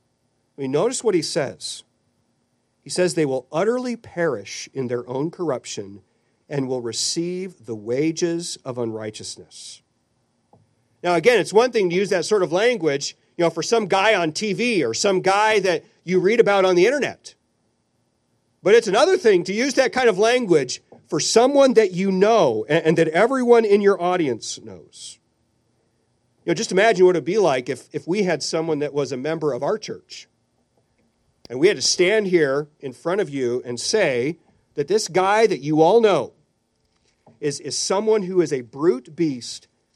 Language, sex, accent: English, male, American